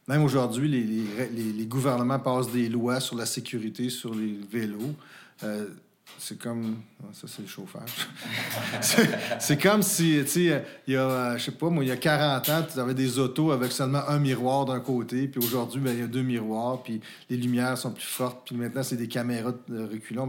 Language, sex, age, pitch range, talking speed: French, male, 40-59, 110-130 Hz, 210 wpm